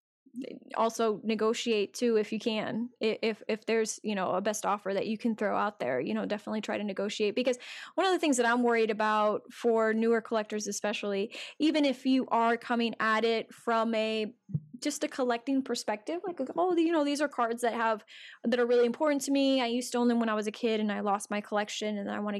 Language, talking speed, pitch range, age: English, 230 wpm, 215-250 Hz, 20-39